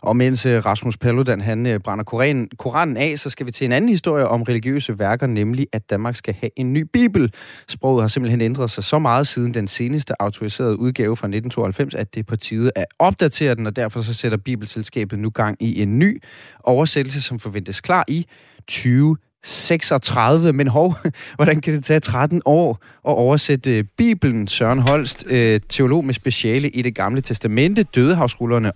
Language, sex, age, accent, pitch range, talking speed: Danish, male, 30-49, native, 110-145 Hz, 180 wpm